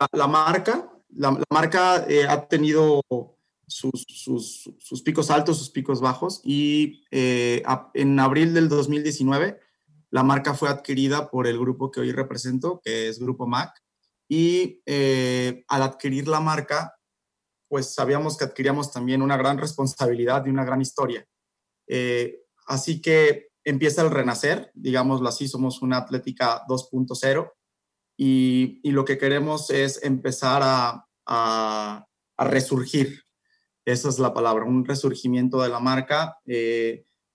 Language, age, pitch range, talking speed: Spanish, 30-49, 125-145 Hz, 140 wpm